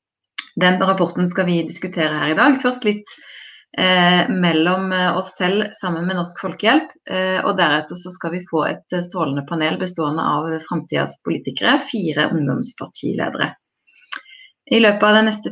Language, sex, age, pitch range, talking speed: English, female, 30-49, 155-210 Hz, 150 wpm